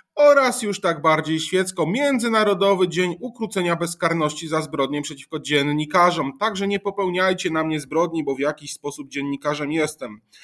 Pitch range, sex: 165-210 Hz, male